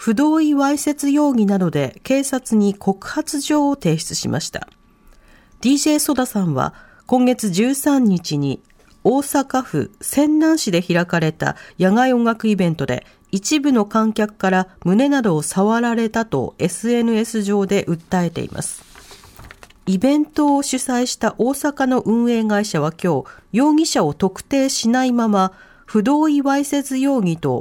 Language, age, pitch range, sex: Japanese, 40-59, 185-270 Hz, female